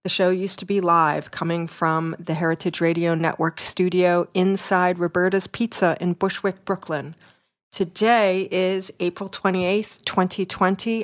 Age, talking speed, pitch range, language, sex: 40-59, 130 wpm, 170-195 Hz, English, female